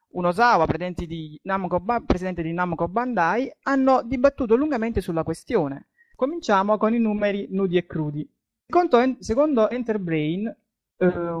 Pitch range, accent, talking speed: 165-235 Hz, native, 115 wpm